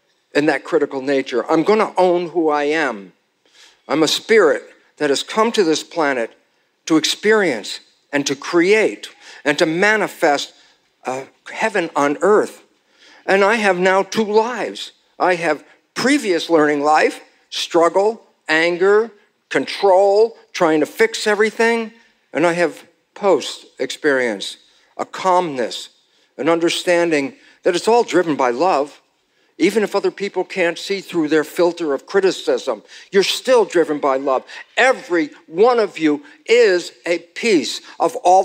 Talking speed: 135 wpm